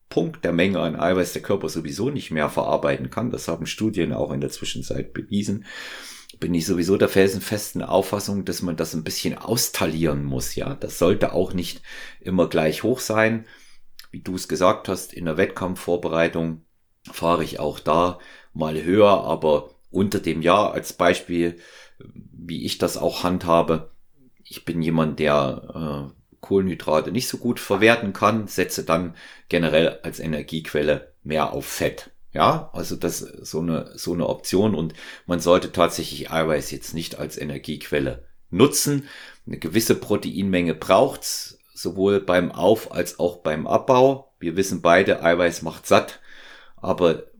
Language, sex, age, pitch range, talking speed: German, male, 40-59, 80-100 Hz, 155 wpm